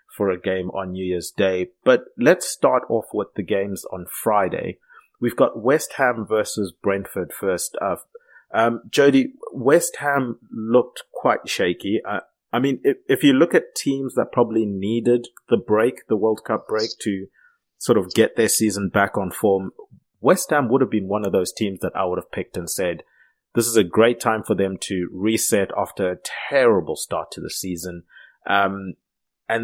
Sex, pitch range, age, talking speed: male, 95-125 Hz, 30-49, 190 wpm